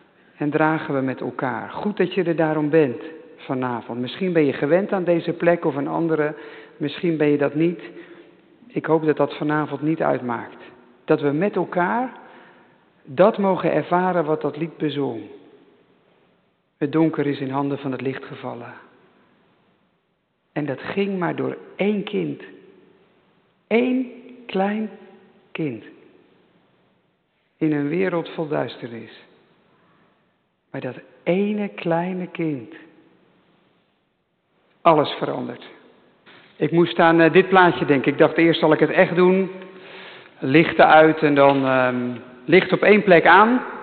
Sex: male